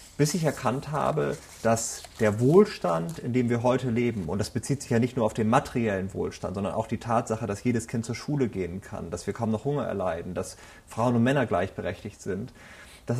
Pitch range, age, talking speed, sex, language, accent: 115-140 Hz, 30-49, 215 wpm, male, German, German